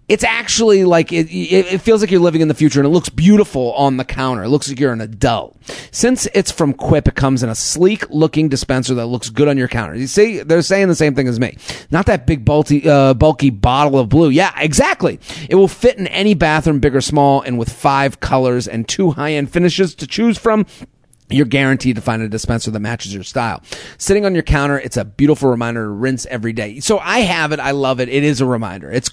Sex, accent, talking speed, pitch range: male, American, 235 wpm, 115-150 Hz